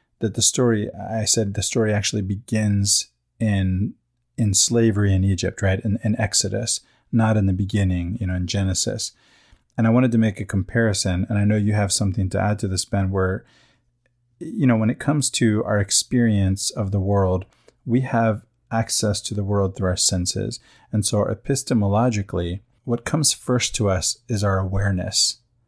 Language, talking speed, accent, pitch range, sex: English, 180 wpm, American, 100-120 Hz, male